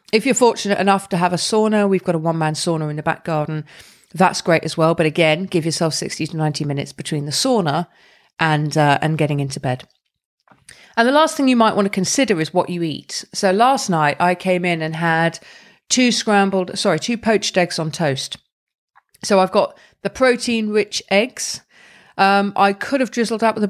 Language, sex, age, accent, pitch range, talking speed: English, female, 40-59, British, 155-200 Hz, 205 wpm